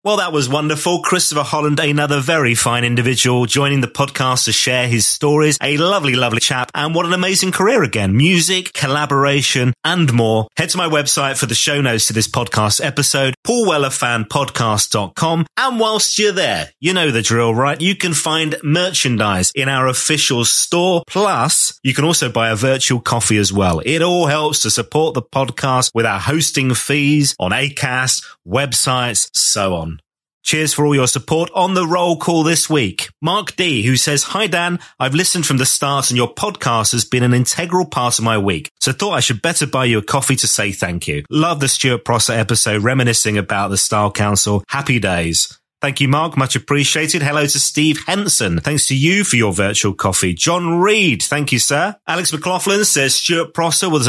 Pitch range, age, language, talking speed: 115-160 Hz, 30-49, English, 190 wpm